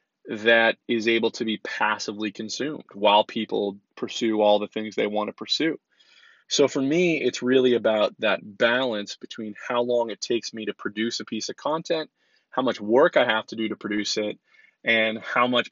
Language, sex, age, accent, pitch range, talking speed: English, male, 20-39, American, 105-135 Hz, 185 wpm